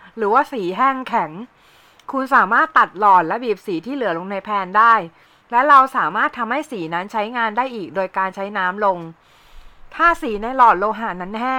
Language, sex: Thai, female